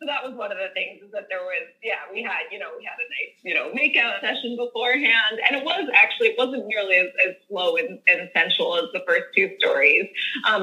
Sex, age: female, 20-39